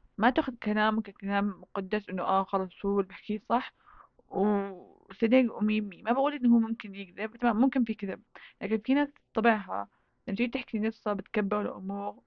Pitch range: 195-235 Hz